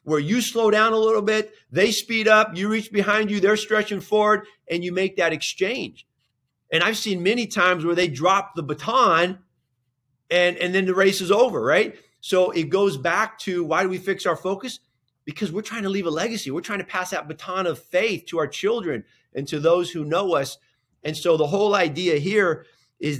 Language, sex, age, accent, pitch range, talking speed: English, male, 30-49, American, 150-195 Hz, 210 wpm